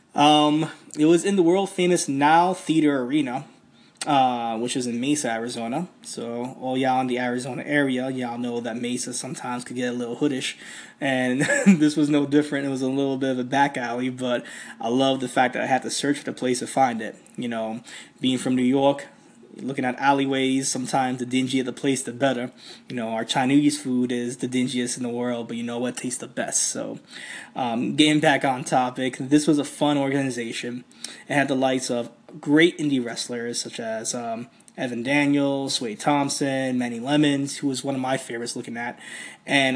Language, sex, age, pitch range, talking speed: English, male, 20-39, 125-150 Hz, 200 wpm